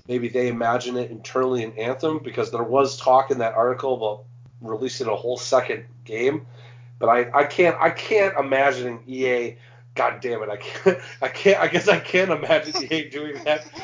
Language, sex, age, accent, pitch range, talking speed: English, male, 30-49, American, 115-130 Hz, 185 wpm